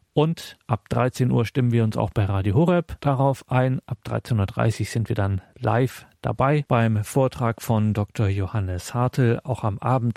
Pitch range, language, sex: 110-130 Hz, German, male